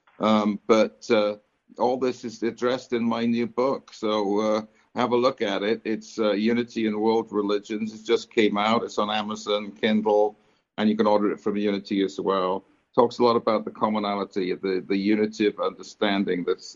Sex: male